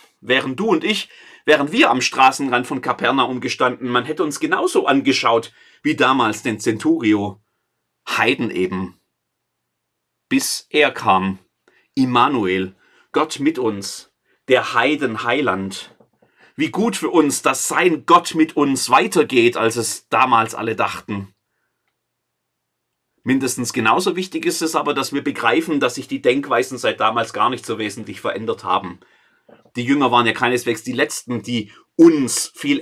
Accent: German